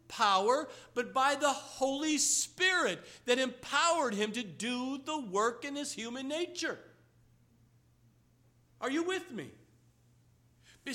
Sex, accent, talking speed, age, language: male, American, 115 wpm, 50-69, English